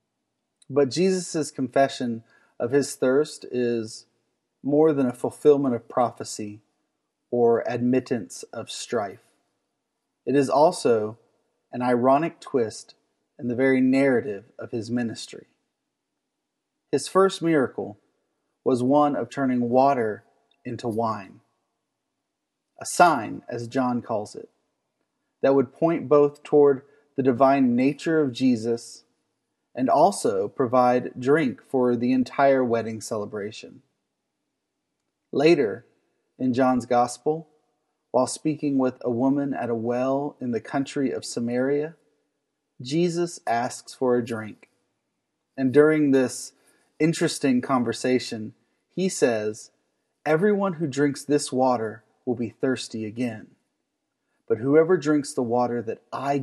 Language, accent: English, American